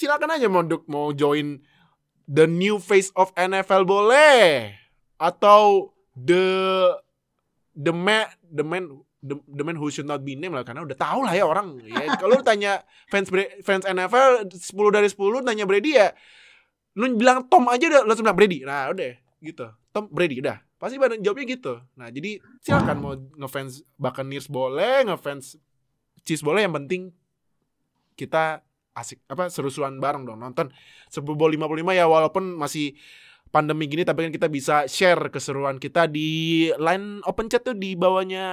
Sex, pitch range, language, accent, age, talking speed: male, 145-195 Hz, Indonesian, native, 20-39, 160 wpm